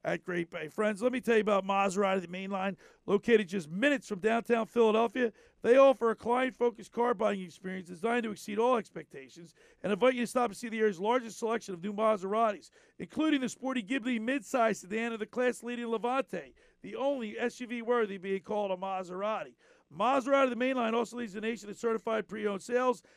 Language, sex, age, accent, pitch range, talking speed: English, male, 50-69, American, 215-265 Hz, 195 wpm